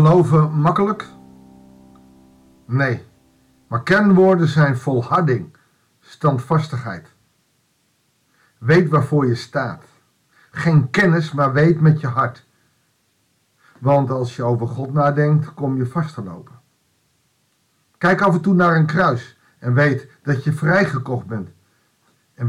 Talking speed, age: 115 wpm, 50-69